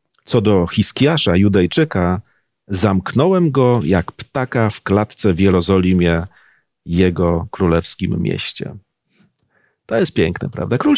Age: 40-59